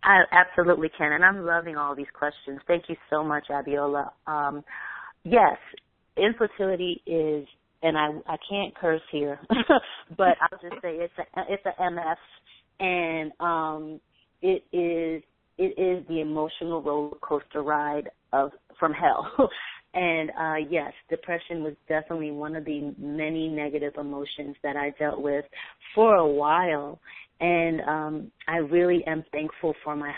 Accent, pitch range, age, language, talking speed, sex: American, 150-175 Hz, 30-49, English, 145 wpm, female